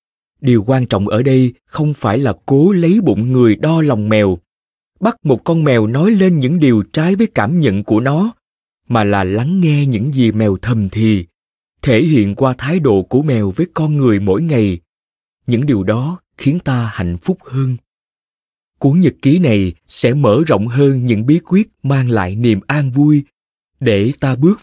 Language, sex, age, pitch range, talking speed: Vietnamese, male, 20-39, 110-155 Hz, 190 wpm